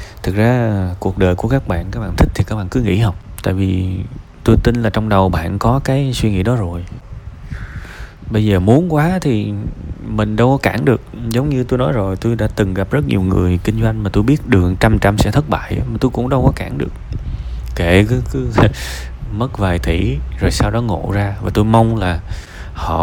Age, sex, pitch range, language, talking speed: 20-39, male, 90-115 Hz, Vietnamese, 225 wpm